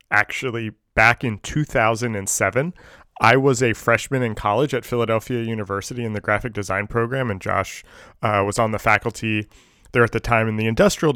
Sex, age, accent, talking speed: male, 30-49, American, 170 wpm